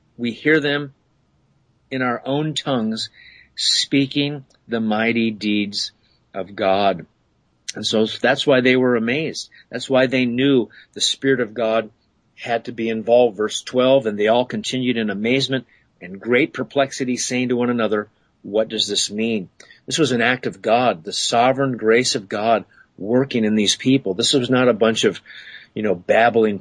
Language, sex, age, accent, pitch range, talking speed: English, male, 40-59, American, 110-135 Hz, 170 wpm